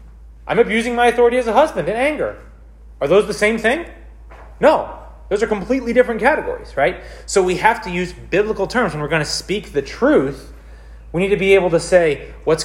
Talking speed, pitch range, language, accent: 205 wpm, 115-185 Hz, English, American